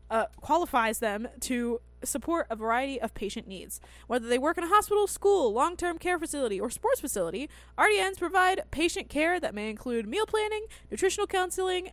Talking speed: 170 wpm